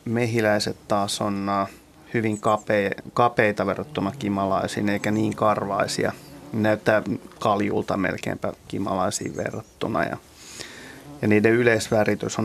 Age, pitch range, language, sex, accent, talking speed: 30-49, 105-120 Hz, Finnish, male, native, 90 wpm